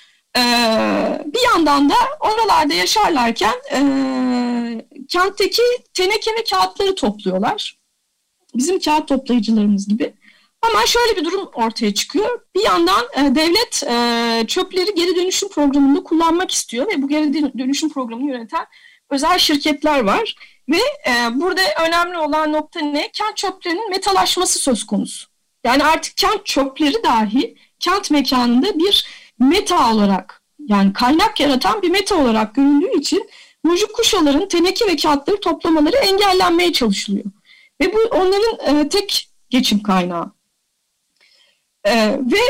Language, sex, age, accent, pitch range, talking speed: Turkish, female, 40-59, native, 260-385 Hz, 125 wpm